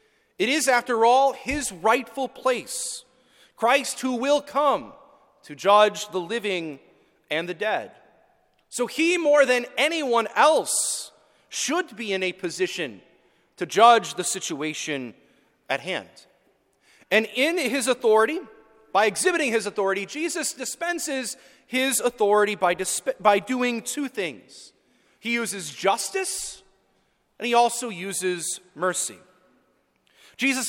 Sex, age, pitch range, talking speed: male, 30-49, 220-280 Hz, 120 wpm